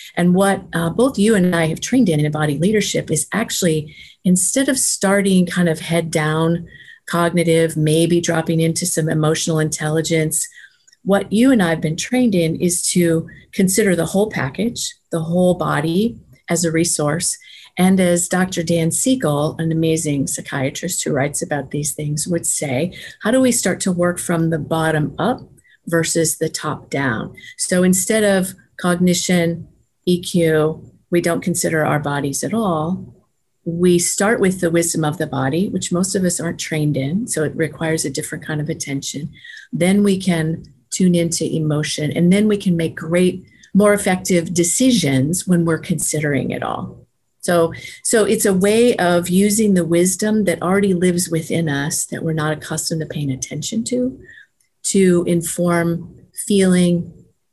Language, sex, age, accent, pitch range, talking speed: English, female, 40-59, American, 160-190 Hz, 165 wpm